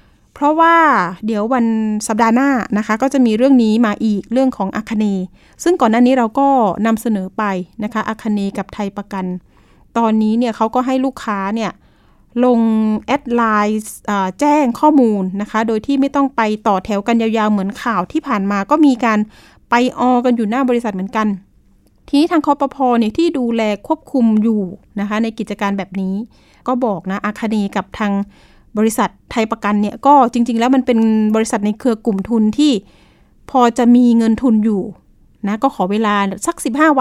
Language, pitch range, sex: Thai, 205-250 Hz, female